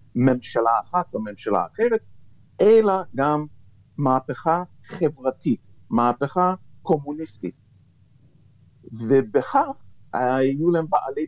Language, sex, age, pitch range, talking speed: Hebrew, male, 50-69, 120-170 Hz, 80 wpm